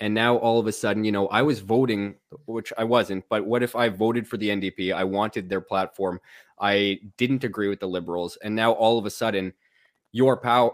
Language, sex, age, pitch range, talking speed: English, male, 20-39, 100-120 Hz, 225 wpm